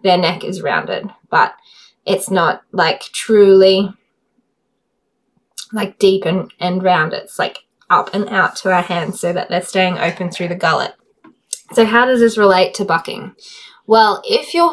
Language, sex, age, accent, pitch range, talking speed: English, female, 20-39, Australian, 180-225 Hz, 165 wpm